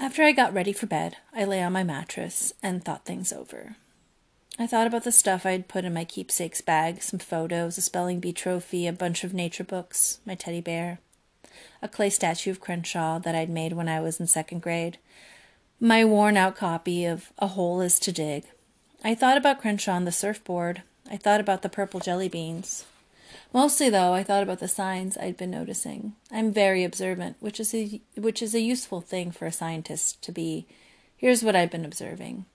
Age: 30-49